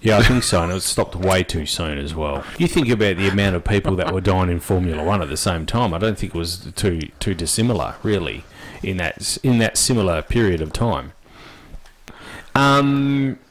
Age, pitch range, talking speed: 30-49, 95-125 Hz, 215 wpm